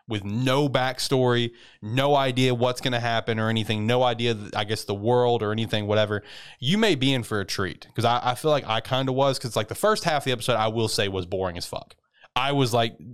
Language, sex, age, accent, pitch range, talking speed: English, male, 20-39, American, 105-125 Hz, 245 wpm